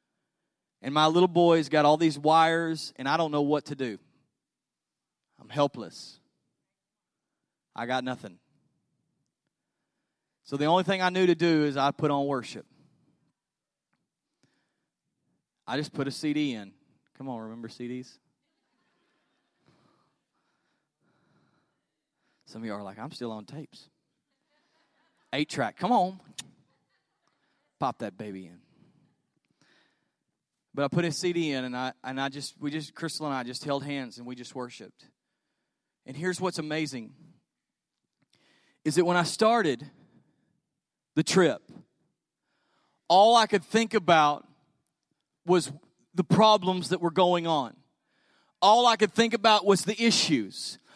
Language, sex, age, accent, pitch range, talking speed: English, male, 30-49, American, 135-180 Hz, 135 wpm